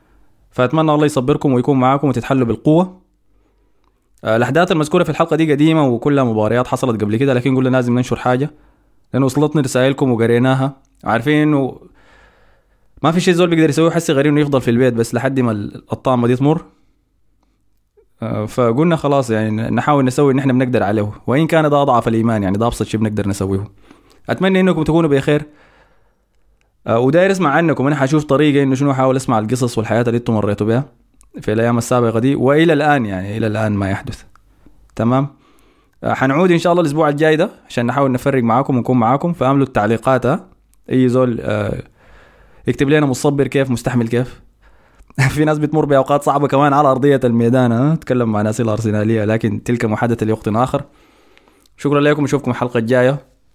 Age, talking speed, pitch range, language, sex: 20-39, 160 wpm, 115-145 Hz, Arabic, male